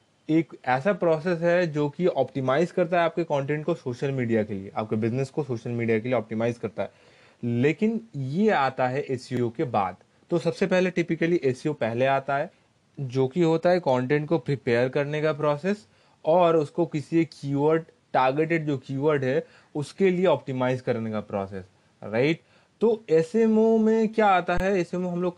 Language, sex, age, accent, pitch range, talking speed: Hindi, male, 20-39, native, 130-170 Hz, 180 wpm